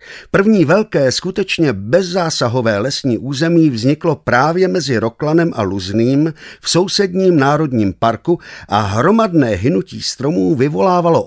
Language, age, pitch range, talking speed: Czech, 50-69, 105-160 Hz, 110 wpm